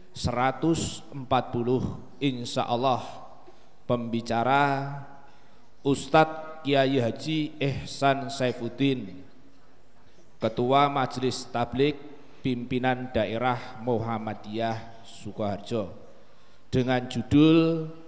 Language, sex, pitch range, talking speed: Indonesian, male, 125-155 Hz, 60 wpm